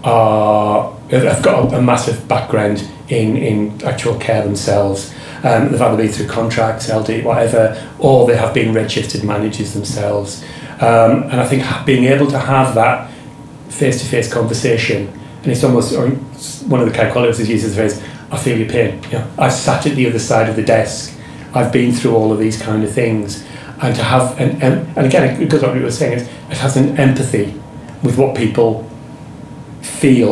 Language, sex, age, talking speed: English, male, 30-49, 195 wpm